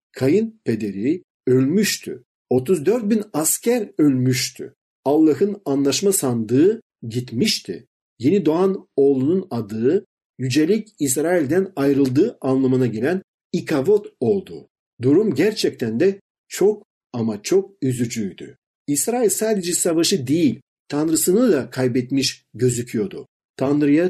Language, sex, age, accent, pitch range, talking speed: Turkish, male, 50-69, native, 130-190 Hz, 95 wpm